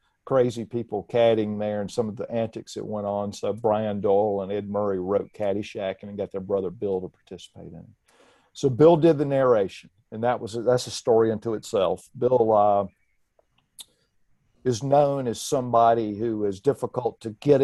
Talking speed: 175 wpm